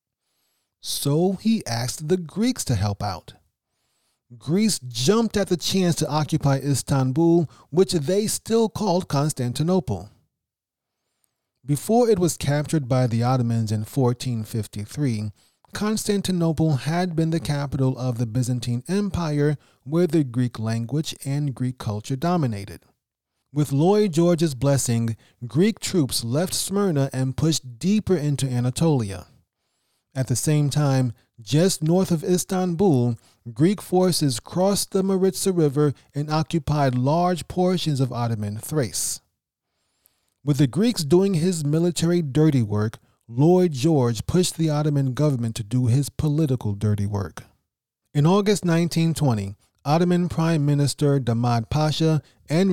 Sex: male